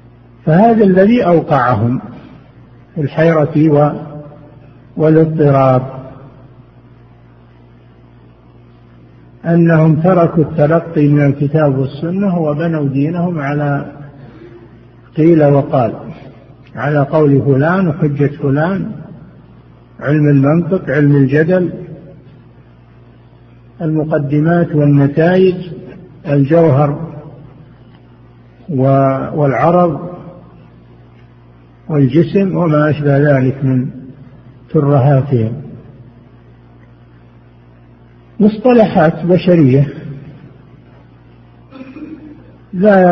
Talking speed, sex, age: 55 wpm, male, 50-69